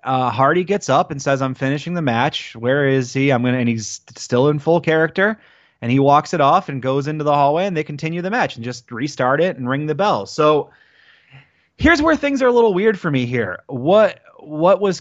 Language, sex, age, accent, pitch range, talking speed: English, male, 30-49, American, 115-150 Hz, 230 wpm